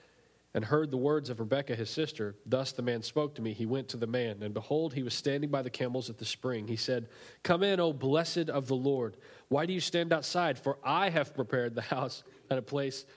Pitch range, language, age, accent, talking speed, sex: 120-150 Hz, English, 40-59, American, 240 wpm, male